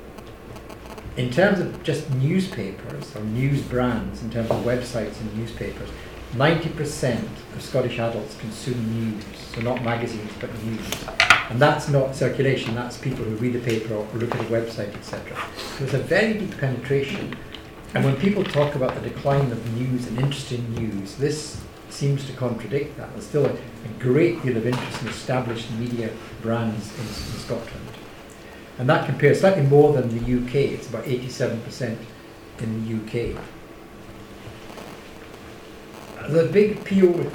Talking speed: 155 wpm